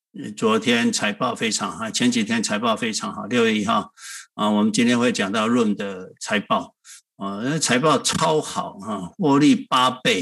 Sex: male